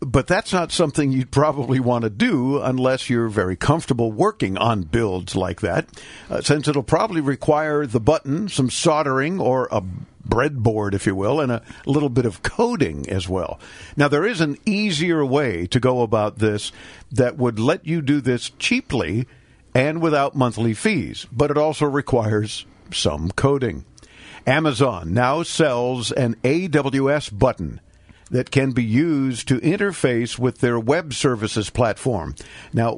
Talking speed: 155 wpm